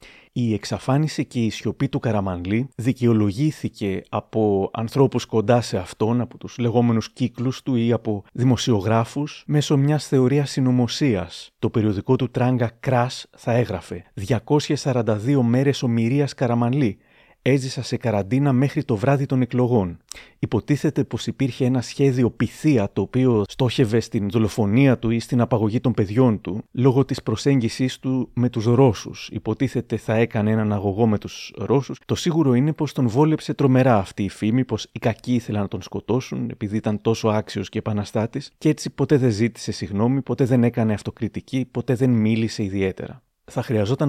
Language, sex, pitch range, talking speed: Greek, male, 110-135 Hz, 160 wpm